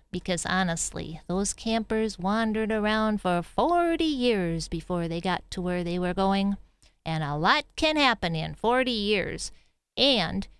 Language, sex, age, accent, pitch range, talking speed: English, female, 40-59, American, 190-315 Hz, 145 wpm